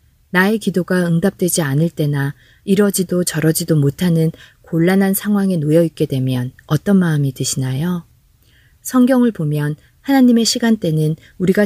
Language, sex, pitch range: Korean, female, 145-195 Hz